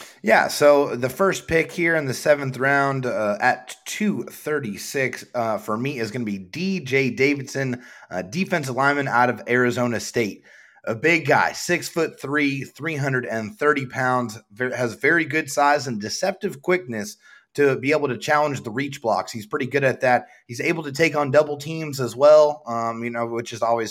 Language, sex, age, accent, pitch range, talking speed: English, male, 30-49, American, 115-150 Hz, 195 wpm